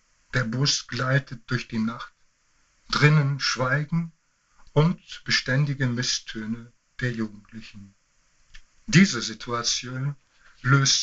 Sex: male